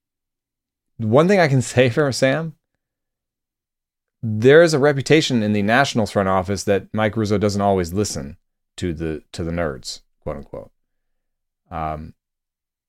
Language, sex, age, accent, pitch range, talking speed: English, male, 30-49, American, 95-125 Hz, 140 wpm